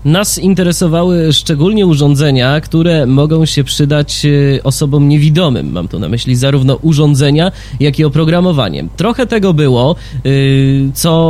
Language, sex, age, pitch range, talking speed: Polish, male, 20-39, 125-160 Hz, 120 wpm